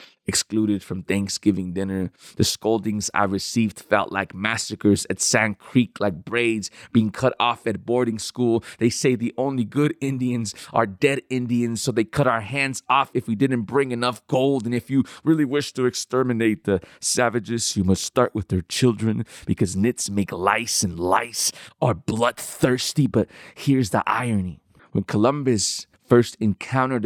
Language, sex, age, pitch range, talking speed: English, male, 30-49, 105-130 Hz, 165 wpm